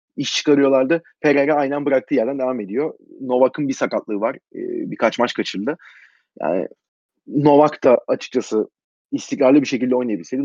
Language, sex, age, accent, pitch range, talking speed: Turkish, male, 30-49, native, 135-175 Hz, 140 wpm